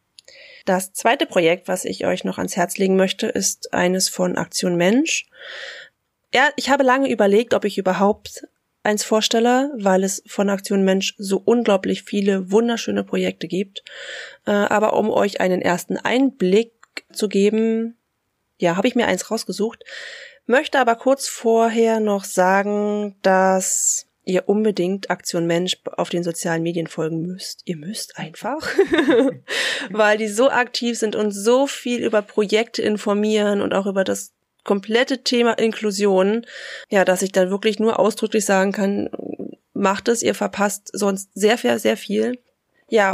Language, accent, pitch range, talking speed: German, German, 190-230 Hz, 150 wpm